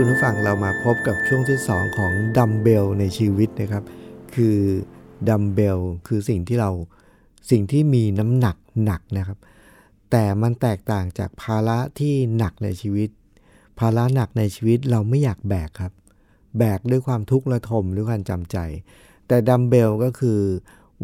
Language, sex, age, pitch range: Thai, male, 60-79, 100-125 Hz